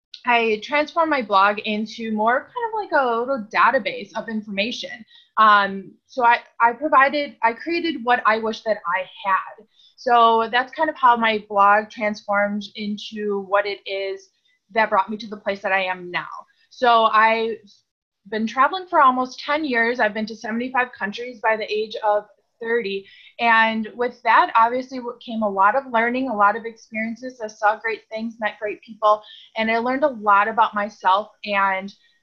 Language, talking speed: English, 185 wpm